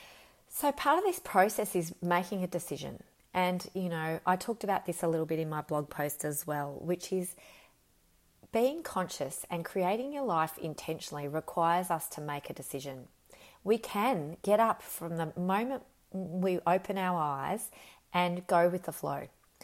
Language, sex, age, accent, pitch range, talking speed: English, female, 30-49, Australian, 160-200 Hz, 170 wpm